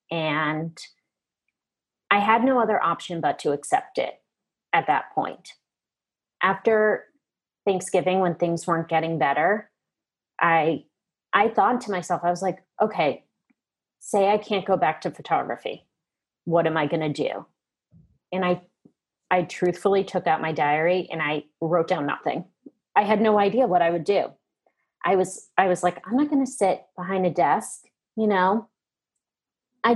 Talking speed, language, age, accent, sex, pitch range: 160 wpm, English, 30-49, American, female, 175-215 Hz